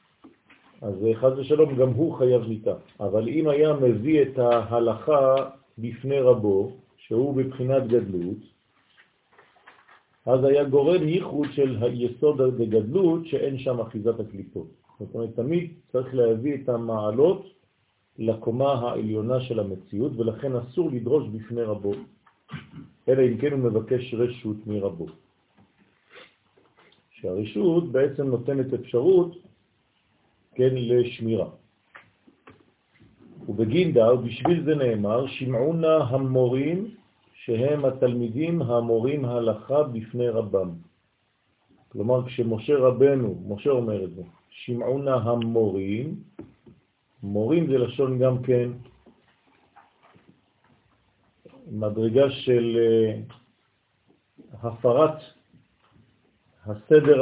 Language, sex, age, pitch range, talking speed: French, male, 50-69, 110-135 Hz, 95 wpm